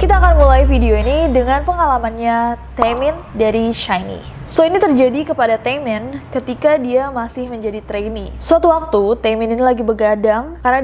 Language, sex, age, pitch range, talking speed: Indonesian, female, 20-39, 220-265 Hz, 150 wpm